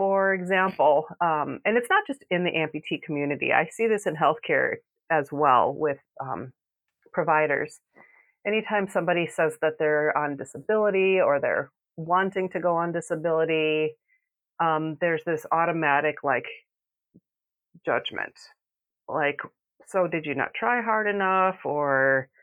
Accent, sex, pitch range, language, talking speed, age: American, female, 150-190 Hz, English, 135 wpm, 30-49